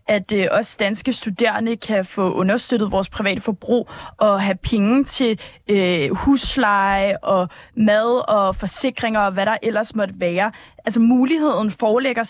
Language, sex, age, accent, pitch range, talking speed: Danish, female, 20-39, native, 220-265 Hz, 145 wpm